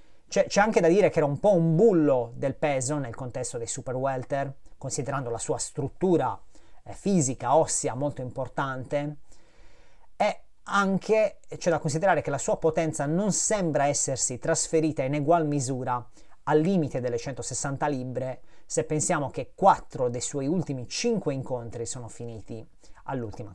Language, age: Italian, 30-49